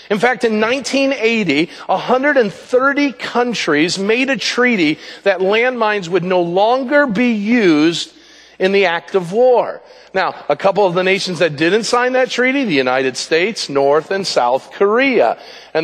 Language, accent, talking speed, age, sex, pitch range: English, American, 150 wpm, 50-69, male, 165-225 Hz